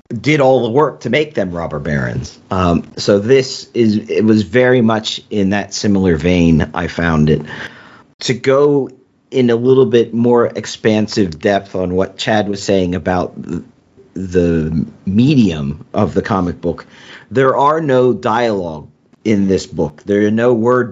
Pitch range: 95-120 Hz